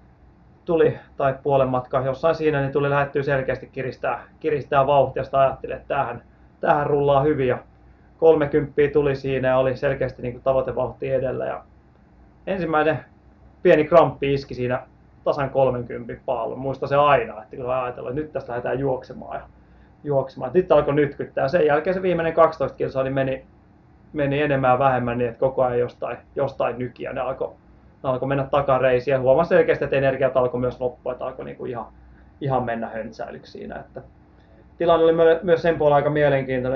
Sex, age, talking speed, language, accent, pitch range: male, 30-49, 155 wpm, Finnish, native, 125-145 Hz